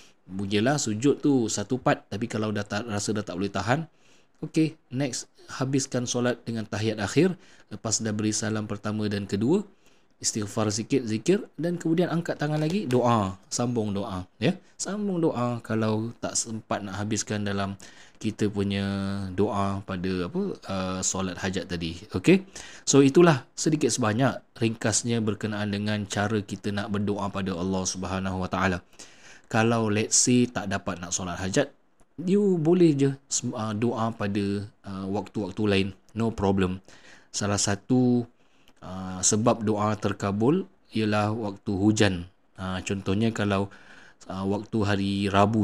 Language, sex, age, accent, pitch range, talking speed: English, male, 20-39, Indonesian, 100-125 Hz, 135 wpm